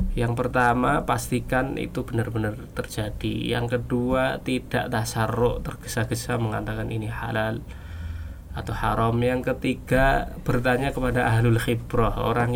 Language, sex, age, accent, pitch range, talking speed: Indonesian, male, 20-39, native, 115-135 Hz, 110 wpm